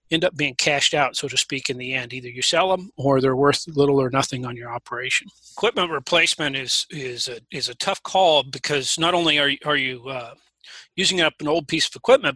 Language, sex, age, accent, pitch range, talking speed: English, male, 30-49, American, 135-155 Hz, 235 wpm